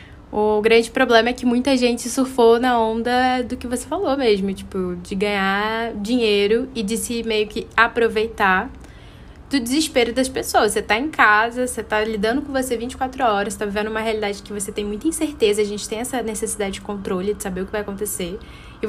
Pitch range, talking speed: 200-240 Hz, 200 wpm